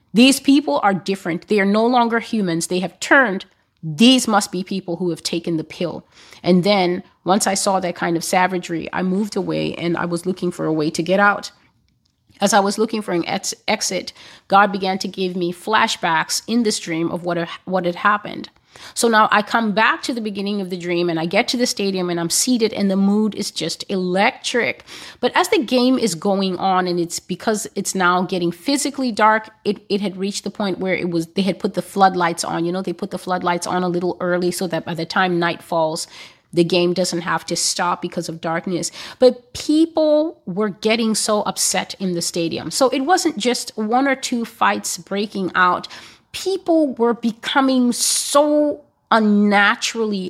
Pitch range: 175-230 Hz